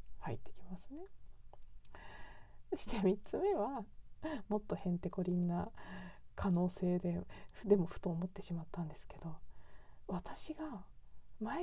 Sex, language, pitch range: female, Japanese, 180-285 Hz